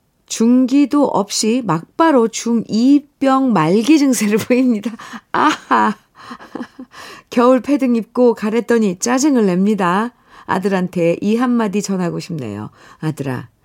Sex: female